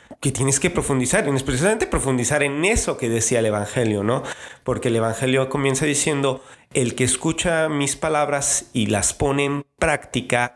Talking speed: 170 wpm